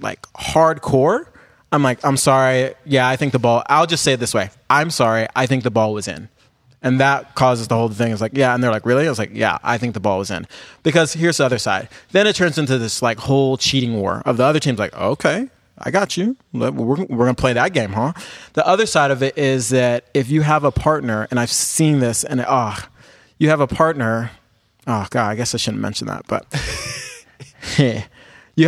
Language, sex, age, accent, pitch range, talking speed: English, male, 30-49, American, 120-145 Hz, 230 wpm